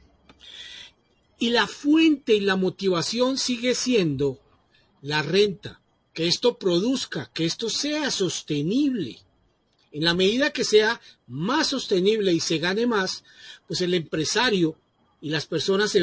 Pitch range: 170-255 Hz